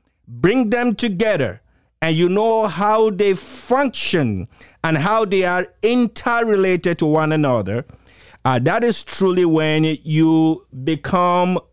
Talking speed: 125 wpm